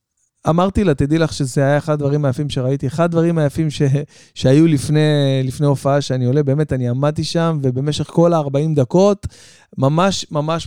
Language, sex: Hebrew, male